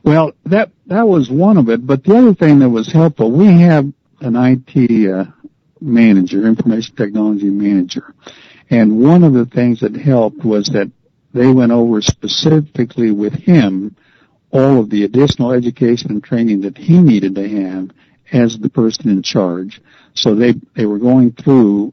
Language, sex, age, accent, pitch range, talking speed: English, male, 60-79, American, 105-125 Hz, 165 wpm